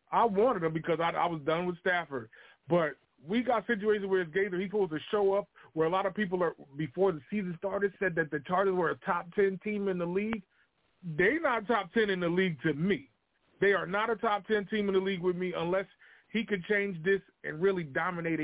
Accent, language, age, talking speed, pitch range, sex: American, English, 30-49, 235 wpm, 175-265 Hz, male